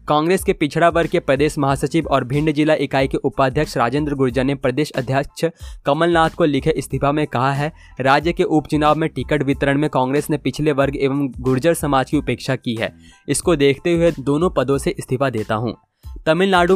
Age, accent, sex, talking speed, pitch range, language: 20-39, native, male, 190 wpm, 135-160 Hz, Hindi